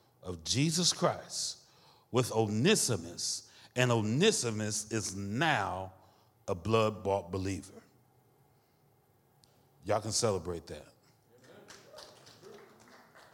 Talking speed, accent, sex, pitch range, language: 70 wpm, American, male, 110-140 Hz, English